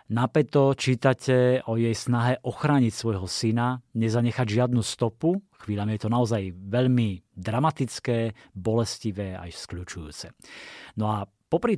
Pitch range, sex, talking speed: 105-130 Hz, male, 115 wpm